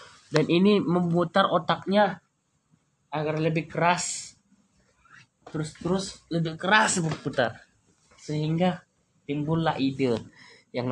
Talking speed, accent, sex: 90 wpm, native, male